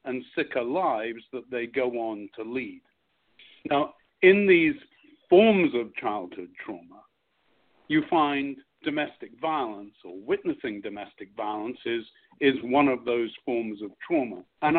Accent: British